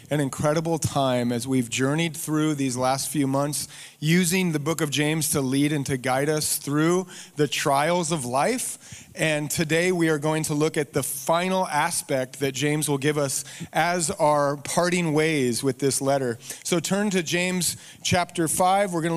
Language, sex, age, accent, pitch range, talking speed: English, male, 30-49, American, 140-170 Hz, 180 wpm